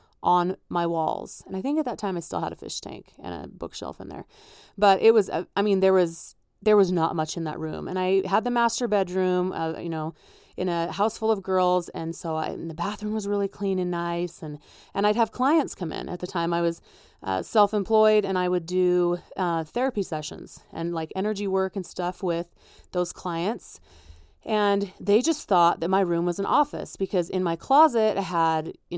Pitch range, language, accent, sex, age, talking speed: 170-205 Hz, English, American, female, 30-49, 225 wpm